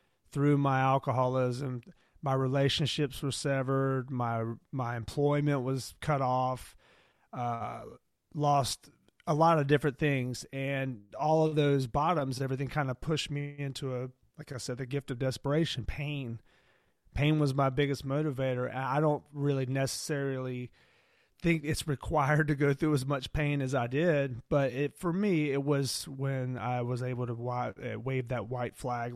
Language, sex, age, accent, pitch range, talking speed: English, male, 30-49, American, 125-145 Hz, 160 wpm